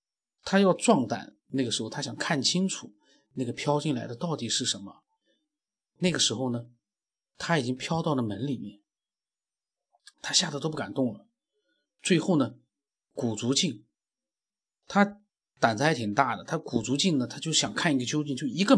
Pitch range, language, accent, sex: 120-175 Hz, Chinese, native, male